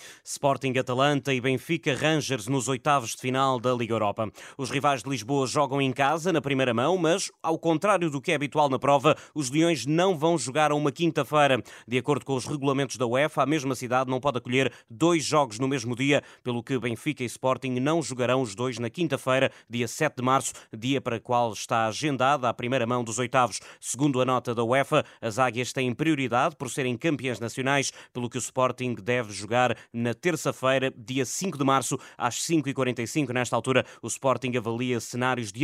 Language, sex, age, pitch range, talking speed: Portuguese, male, 20-39, 125-150 Hz, 195 wpm